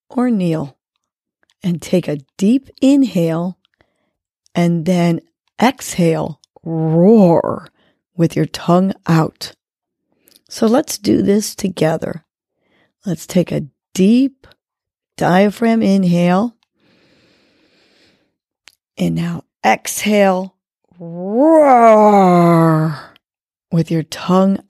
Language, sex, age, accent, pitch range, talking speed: English, female, 40-59, American, 165-225 Hz, 80 wpm